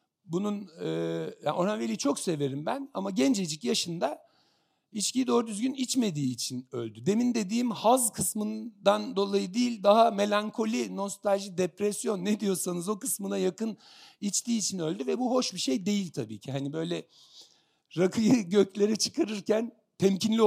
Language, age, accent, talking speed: Turkish, 60-79, native, 140 wpm